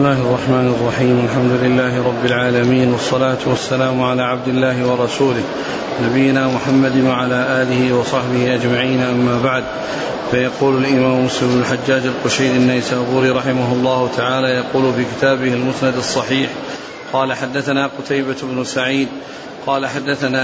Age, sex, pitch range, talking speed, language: 40-59, male, 130-140 Hz, 125 wpm, Arabic